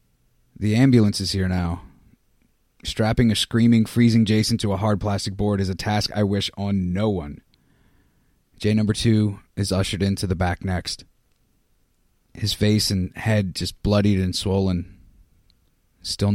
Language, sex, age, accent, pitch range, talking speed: English, male, 30-49, American, 95-110 Hz, 150 wpm